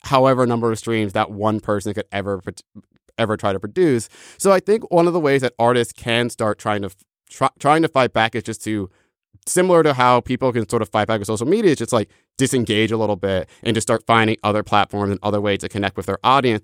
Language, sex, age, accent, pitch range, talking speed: English, male, 30-49, American, 100-120 Hz, 240 wpm